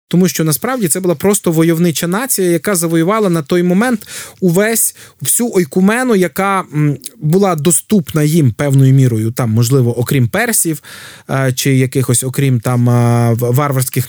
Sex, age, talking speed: male, 20-39, 130 wpm